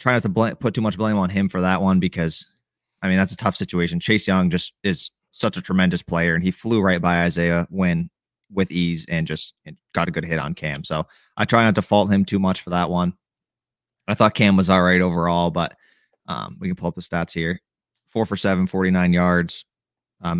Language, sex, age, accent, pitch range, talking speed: English, male, 30-49, American, 90-100 Hz, 230 wpm